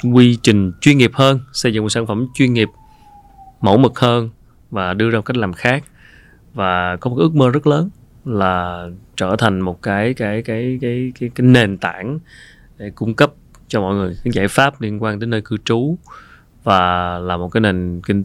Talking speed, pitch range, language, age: 205 wpm, 95-120 Hz, Vietnamese, 20-39